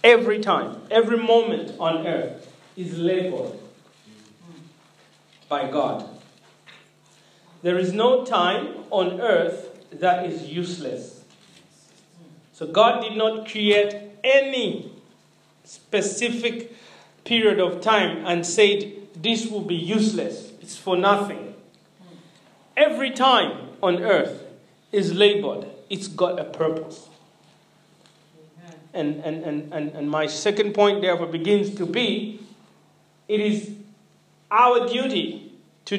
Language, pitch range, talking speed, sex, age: English, 165-220 Hz, 105 wpm, male, 40-59